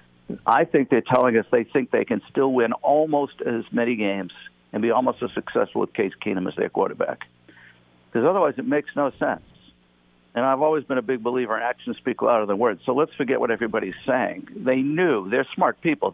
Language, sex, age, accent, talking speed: English, male, 50-69, American, 210 wpm